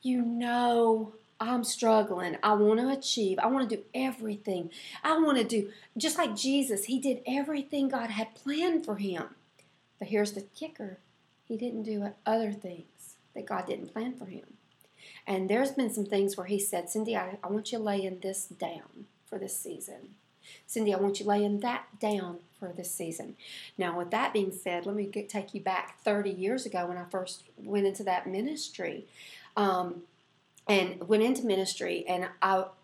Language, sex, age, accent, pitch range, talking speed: English, female, 40-59, American, 190-235 Hz, 180 wpm